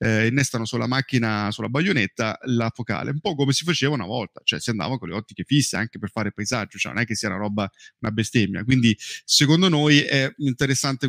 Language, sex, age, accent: Italian, male, 30-49, native